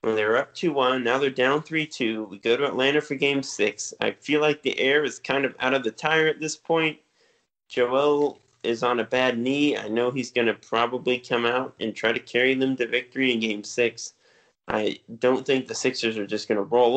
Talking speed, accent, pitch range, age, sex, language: 225 wpm, American, 120-150 Hz, 20-39, male, English